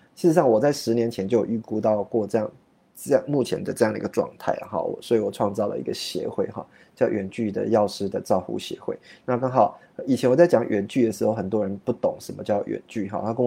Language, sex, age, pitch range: Chinese, male, 20-39, 105-125 Hz